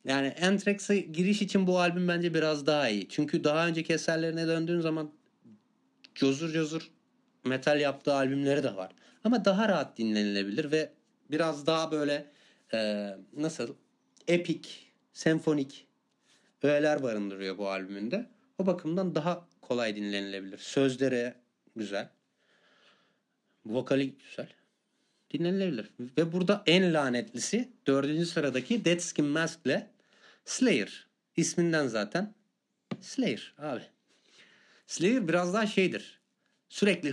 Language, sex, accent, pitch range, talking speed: Turkish, male, native, 135-185 Hz, 115 wpm